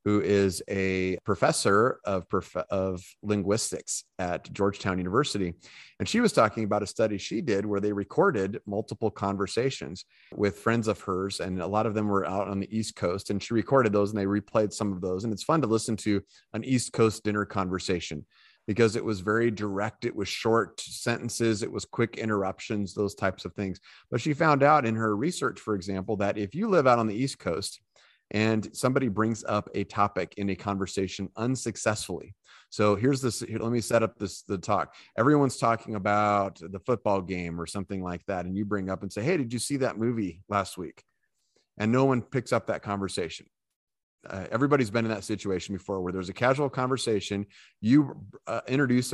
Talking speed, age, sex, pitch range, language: 195 wpm, 30-49, male, 100-115 Hz, English